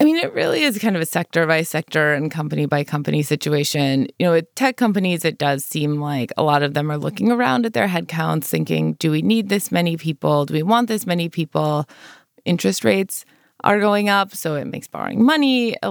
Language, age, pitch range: English, 20-39, 155-210 Hz